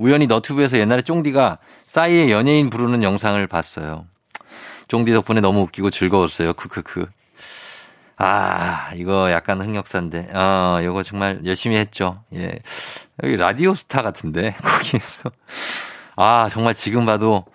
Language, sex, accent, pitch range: Korean, male, native, 95-125 Hz